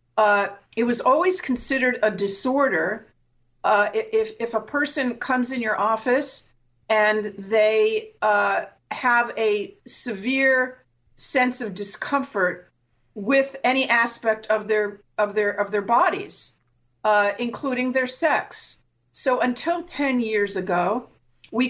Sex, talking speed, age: female, 125 wpm, 50-69